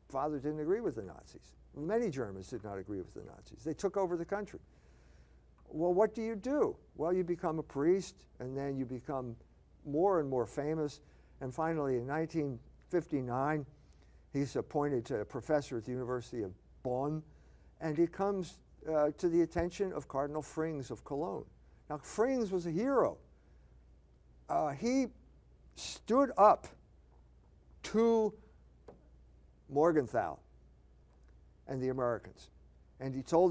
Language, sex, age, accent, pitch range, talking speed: English, male, 60-79, American, 100-165 Hz, 145 wpm